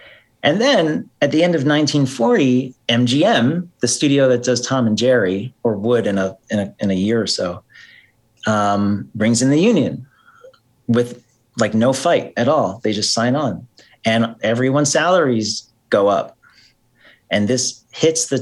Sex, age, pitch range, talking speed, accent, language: male, 40-59, 110-140 Hz, 165 wpm, American, English